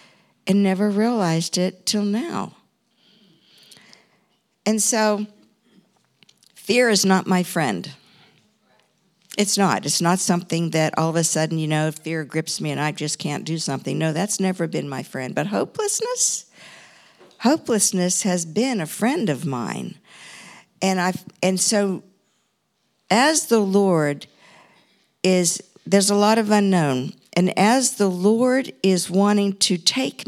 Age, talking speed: 50-69, 140 wpm